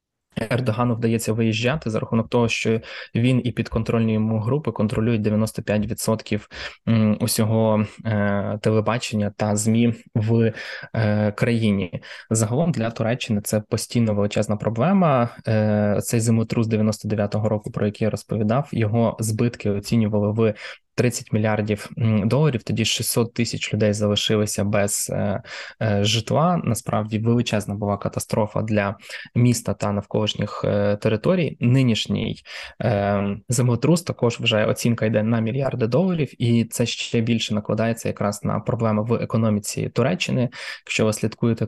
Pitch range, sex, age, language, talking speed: 105-120 Hz, male, 20-39, Ukrainian, 120 wpm